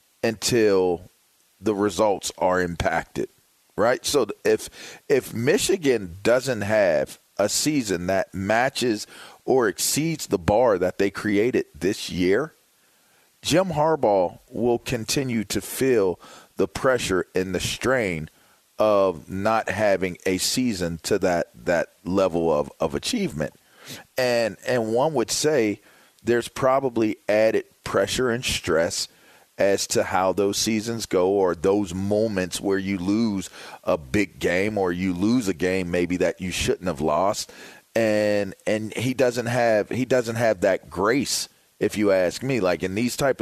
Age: 40-59